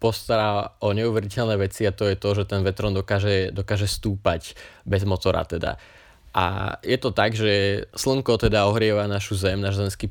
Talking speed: 170 wpm